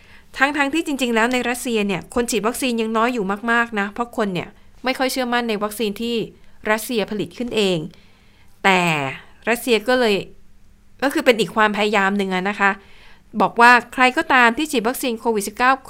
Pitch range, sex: 195-245 Hz, female